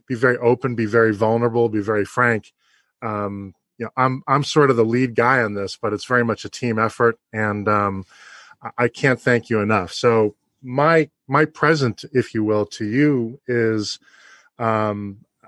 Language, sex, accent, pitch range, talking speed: English, male, American, 110-130 Hz, 180 wpm